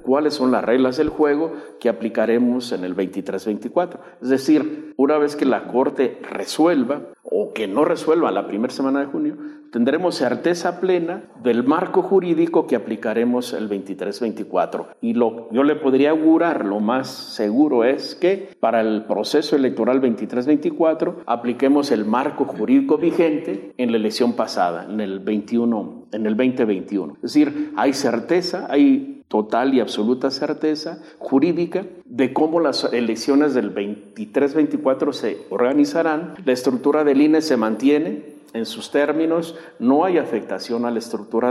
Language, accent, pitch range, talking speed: Spanish, Mexican, 120-160 Hz, 145 wpm